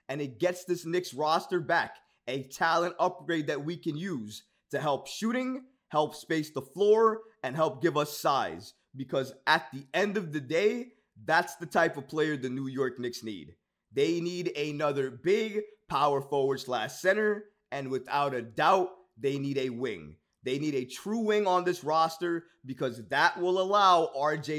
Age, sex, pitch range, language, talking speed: 20-39, male, 140-180 Hz, English, 175 wpm